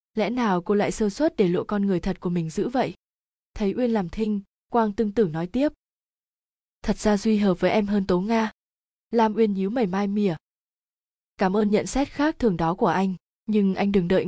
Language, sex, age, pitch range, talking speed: Vietnamese, female, 20-39, 185-220 Hz, 220 wpm